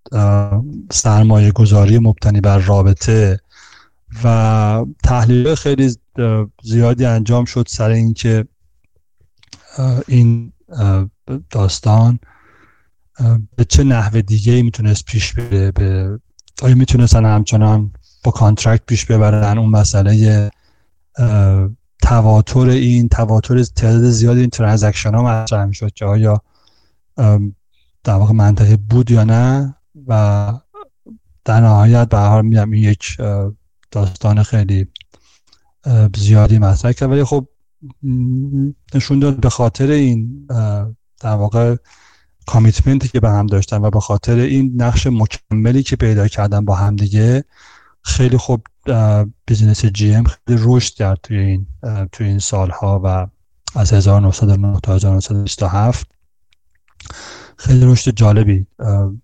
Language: Persian